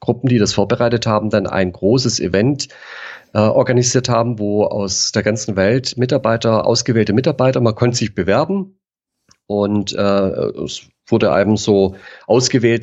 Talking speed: 145 wpm